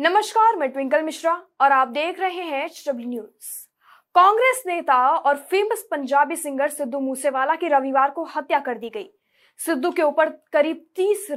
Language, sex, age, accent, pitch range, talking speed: Hindi, female, 20-39, native, 275-370 Hz, 160 wpm